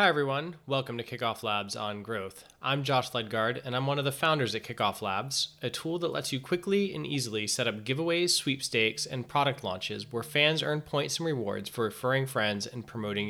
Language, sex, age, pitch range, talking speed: English, male, 20-39, 115-145 Hz, 210 wpm